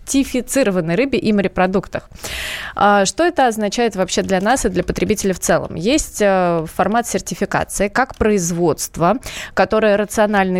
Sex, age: female, 20-39